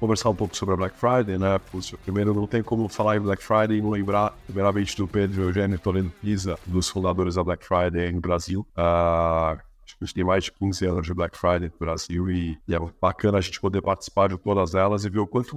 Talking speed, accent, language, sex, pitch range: 225 wpm, Brazilian, Portuguese, male, 95-105 Hz